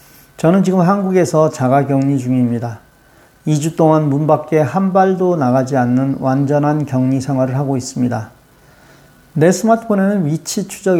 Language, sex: Korean, male